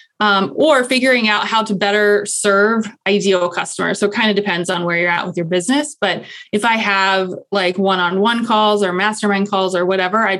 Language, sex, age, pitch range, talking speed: English, female, 20-39, 190-225 Hz, 200 wpm